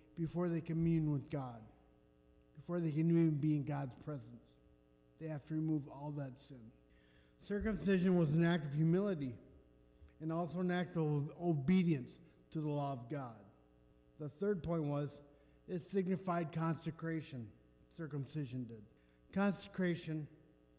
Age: 50-69